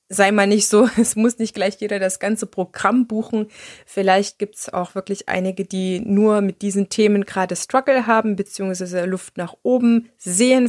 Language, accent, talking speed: German, German, 180 wpm